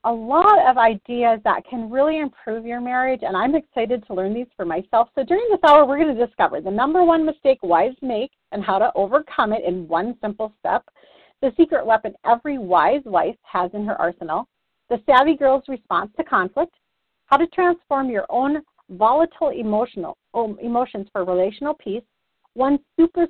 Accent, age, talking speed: American, 40-59, 180 wpm